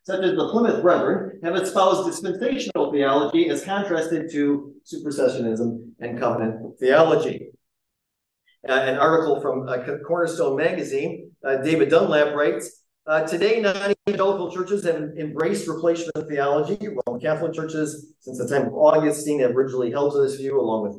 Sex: male